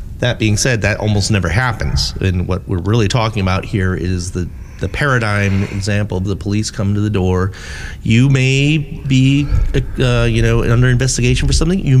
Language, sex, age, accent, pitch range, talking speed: English, male, 40-59, American, 95-125 Hz, 185 wpm